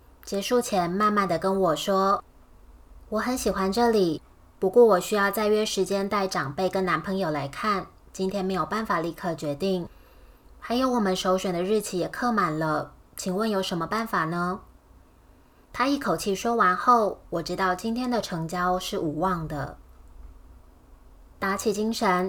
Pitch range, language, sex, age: 170-230 Hz, Chinese, female, 20-39